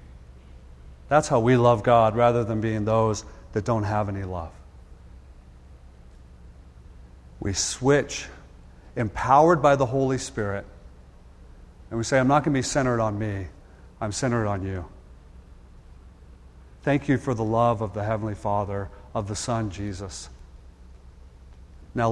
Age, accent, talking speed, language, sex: 40-59, American, 135 wpm, English, male